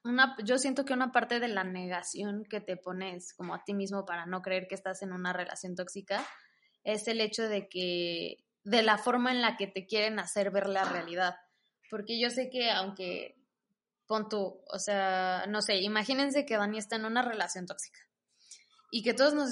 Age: 20-39